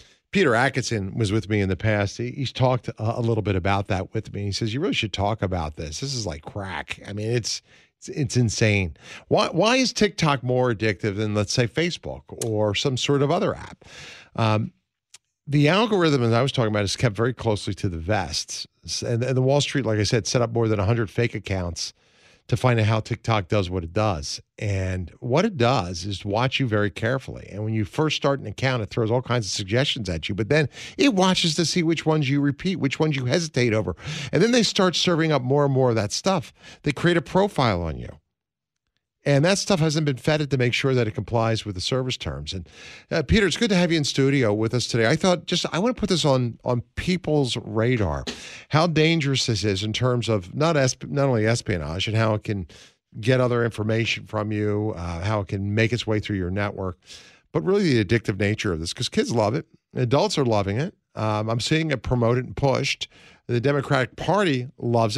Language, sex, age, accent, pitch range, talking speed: English, male, 50-69, American, 105-140 Hz, 225 wpm